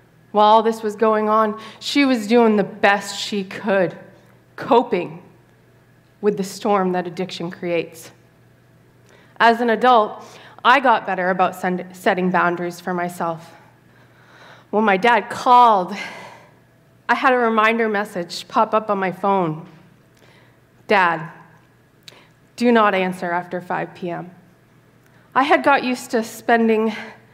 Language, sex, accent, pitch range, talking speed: English, female, American, 185-240 Hz, 125 wpm